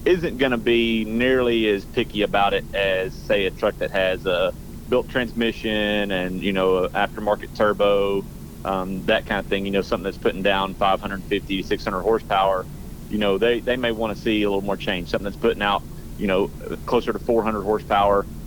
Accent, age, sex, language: American, 30-49, male, English